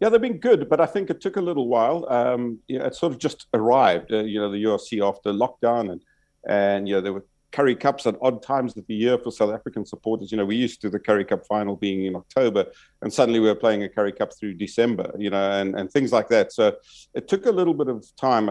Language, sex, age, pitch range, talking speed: English, male, 50-69, 100-125 Hz, 265 wpm